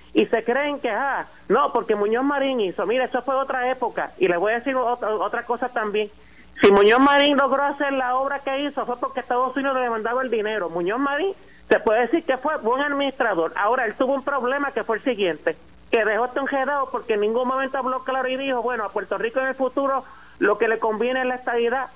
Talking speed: 230 wpm